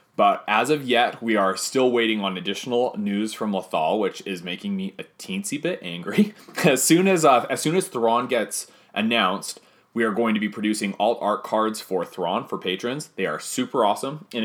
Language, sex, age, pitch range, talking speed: English, male, 30-49, 105-135 Hz, 205 wpm